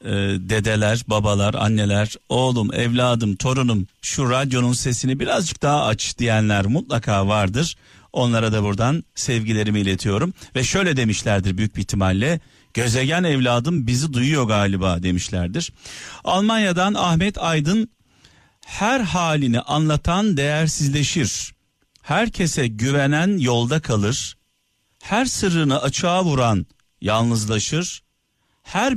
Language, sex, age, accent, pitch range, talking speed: Turkish, male, 50-69, native, 105-150 Hz, 100 wpm